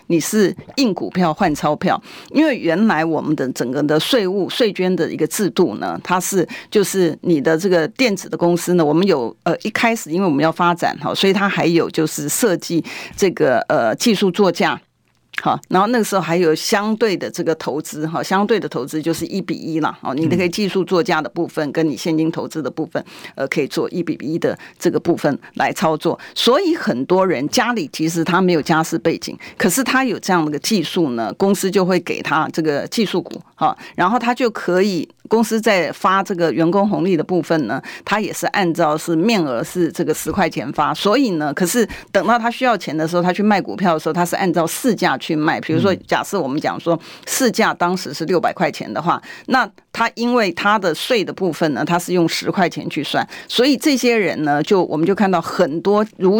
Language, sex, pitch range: Chinese, female, 165-205 Hz